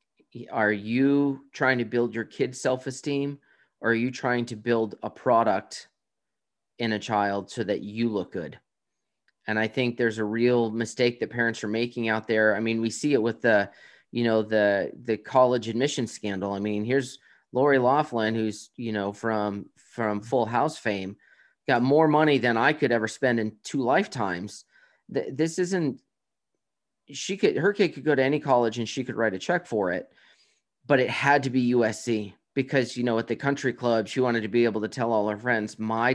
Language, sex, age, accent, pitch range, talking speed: English, male, 30-49, American, 110-130 Hz, 195 wpm